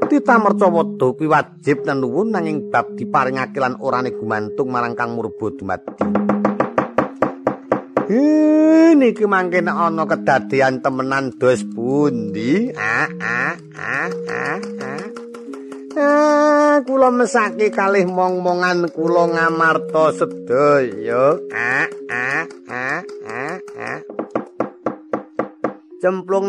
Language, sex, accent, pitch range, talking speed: Indonesian, male, native, 135-205 Hz, 85 wpm